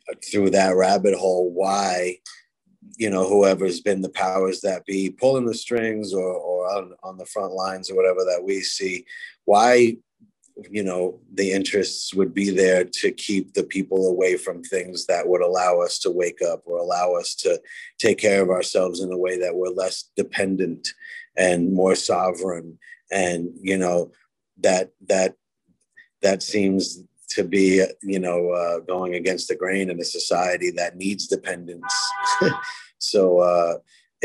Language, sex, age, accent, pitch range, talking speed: English, male, 30-49, American, 90-110 Hz, 160 wpm